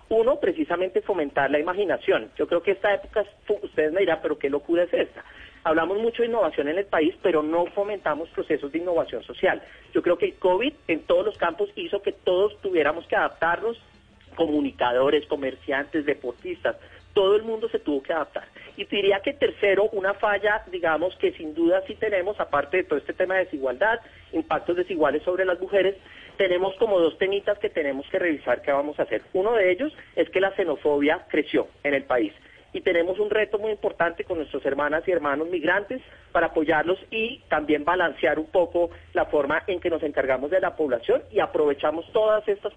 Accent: Colombian